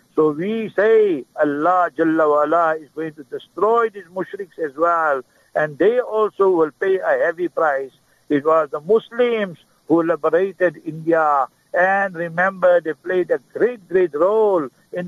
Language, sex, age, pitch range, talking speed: English, male, 60-79, 160-195 Hz, 145 wpm